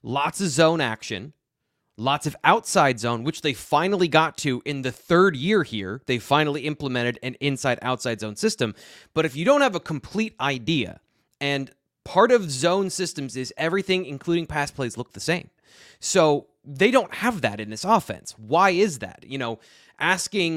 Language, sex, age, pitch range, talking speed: English, male, 20-39, 125-175 Hz, 180 wpm